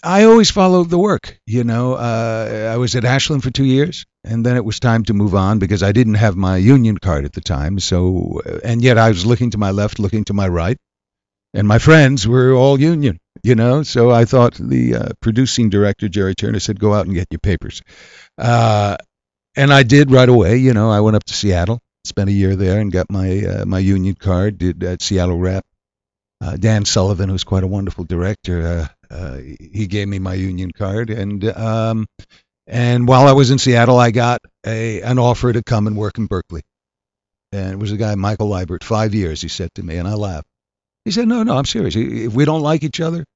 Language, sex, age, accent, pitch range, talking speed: English, male, 60-79, American, 95-120 Hz, 225 wpm